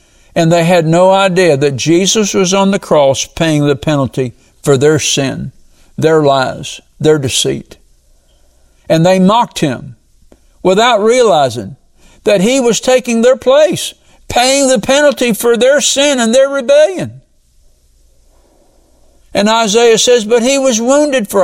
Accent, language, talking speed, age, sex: American, English, 140 wpm, 60-79, male